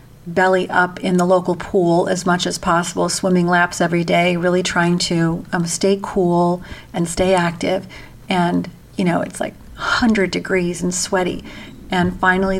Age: 50-69